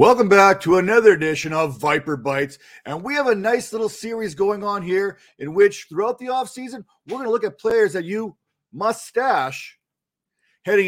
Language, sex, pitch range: English, male, 150-210 Hz